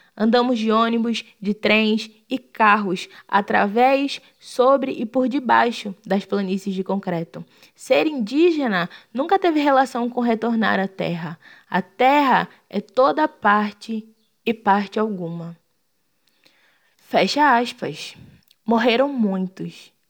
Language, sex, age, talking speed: Portuguese, female, 20-39, 110 wpm